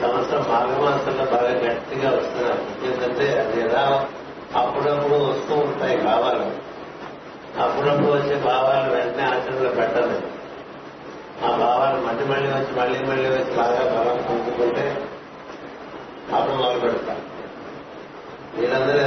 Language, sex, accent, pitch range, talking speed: Telugu, male, native, 120-135 Hz, 105 wpm